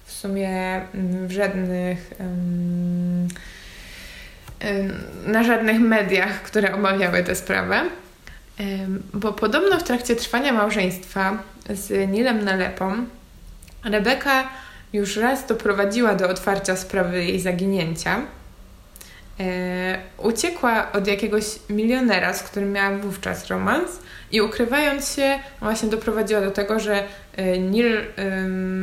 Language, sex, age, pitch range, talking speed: Polish, female, 20-39, 185-220 Hz, 105 wpm